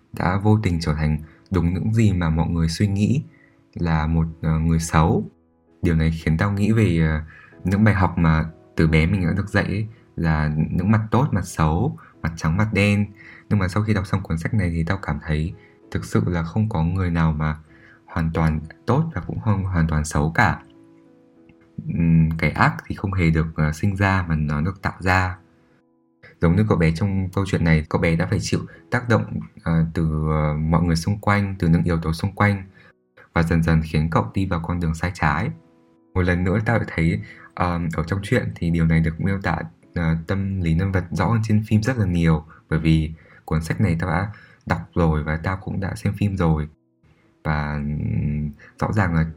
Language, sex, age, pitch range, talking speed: Vietnamese, male, 20-39, 80-100 Hz, 215 wpm